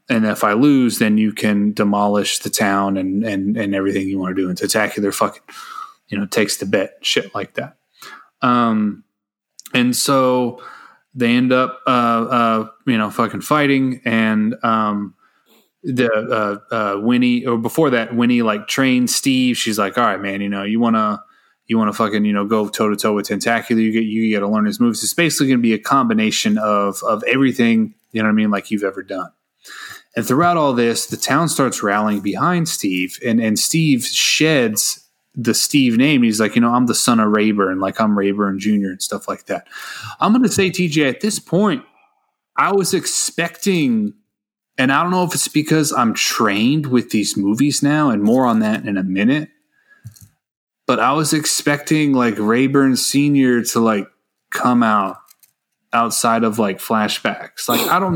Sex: male